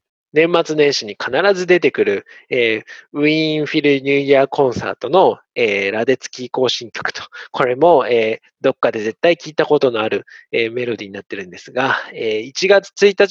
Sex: male